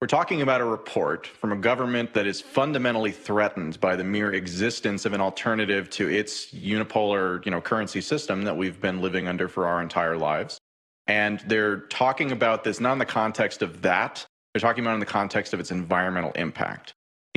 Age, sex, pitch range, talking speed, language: 30-49, male, 95-110 Hz, 195 wpm, English